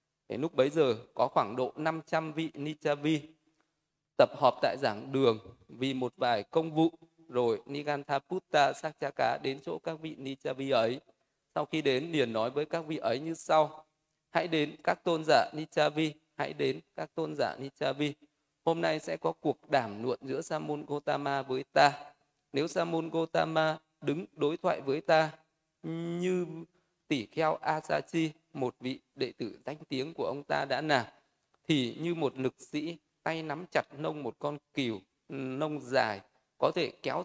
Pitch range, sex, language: 140-160 Hz, male, Vietnamese